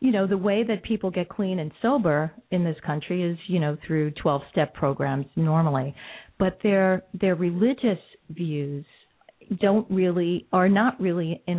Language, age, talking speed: English, 50-69, 165 wpm